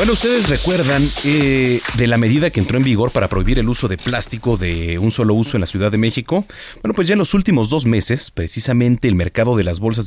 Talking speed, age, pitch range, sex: 240 wpm, 40-59, 100-135 Hz, male